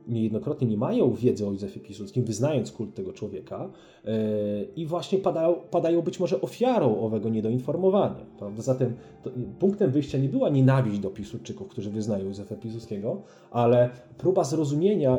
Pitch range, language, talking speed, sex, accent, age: 115-155 Hz, Polish, 135 wpm, male, native, 30-49